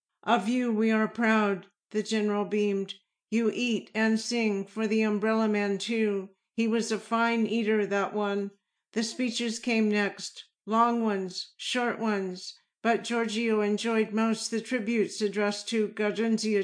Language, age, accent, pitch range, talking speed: English, 50-69, American, 205-230 Hz, 150 wpm